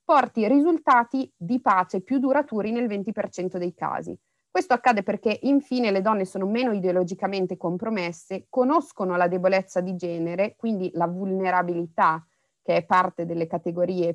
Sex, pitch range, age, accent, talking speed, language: female, 175-225 Hz, 30-49, native, 140 wpm, Italian